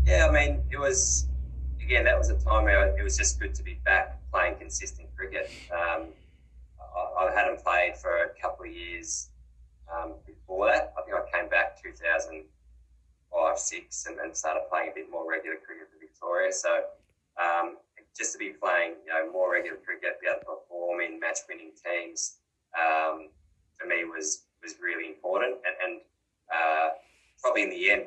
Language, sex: English, male